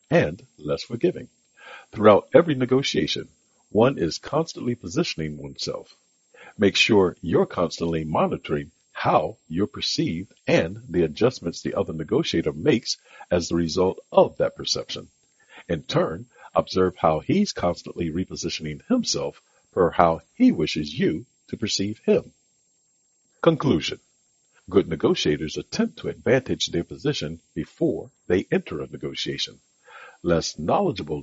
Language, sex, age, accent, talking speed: English, male, 60-79, American, 120 wpm